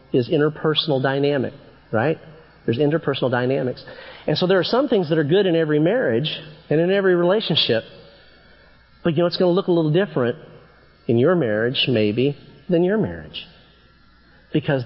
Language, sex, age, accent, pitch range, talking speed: English, male, 40-59, American, 135-185 Hz, 165 wpm